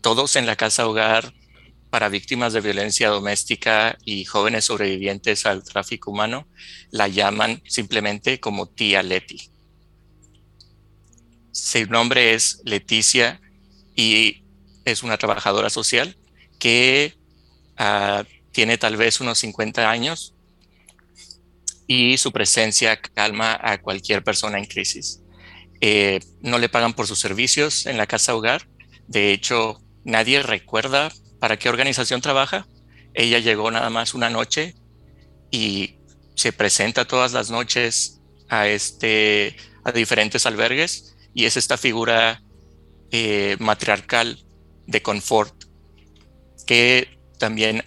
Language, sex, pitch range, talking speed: Spanish, male, 95-115 Hz, 115 wpm